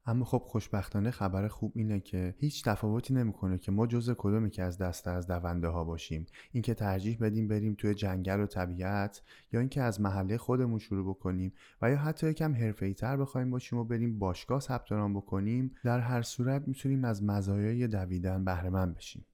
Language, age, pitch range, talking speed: Persian, 20-39, 95-125 Hz, 185 wpm